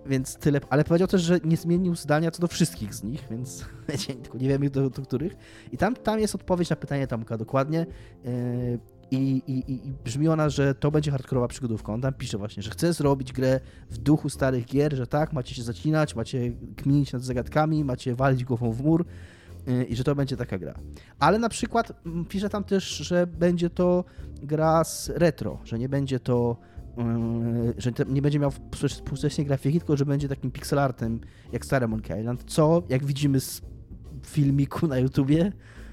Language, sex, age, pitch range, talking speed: Polish, male, 20-39, 115-150 Hz, 185 wpm